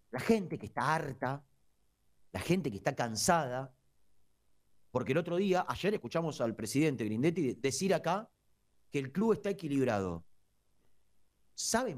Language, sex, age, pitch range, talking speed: Spanish, male, 40-59, 125-210 Hz, 135 wpm